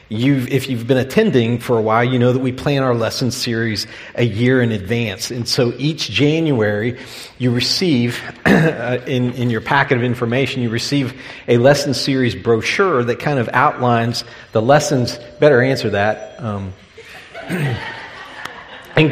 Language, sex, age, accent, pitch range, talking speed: English, male, 50-69, American, 115-135 Hz, 155 wpm